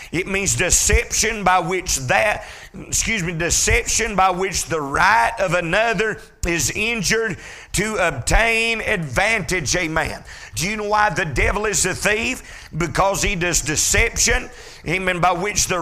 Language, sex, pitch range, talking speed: English, male, 170-215 Hz, 145 wpm